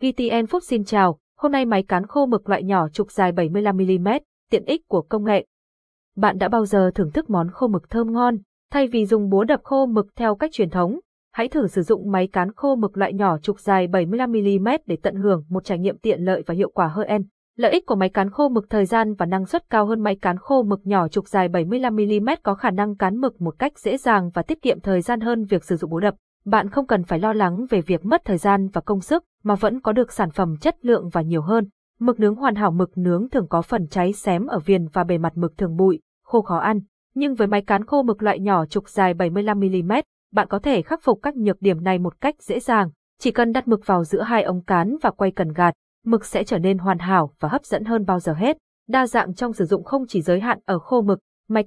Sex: female